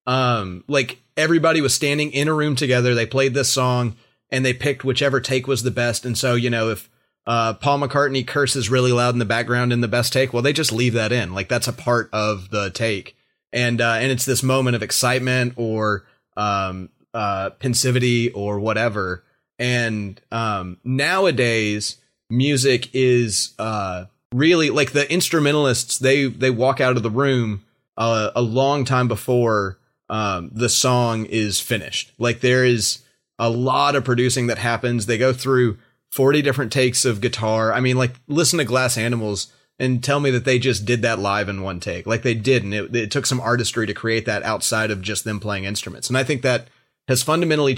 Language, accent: English, American